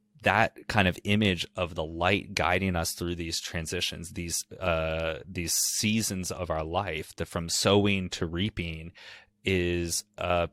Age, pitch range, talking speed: 30-49, 85-100 Hz, 150 wpm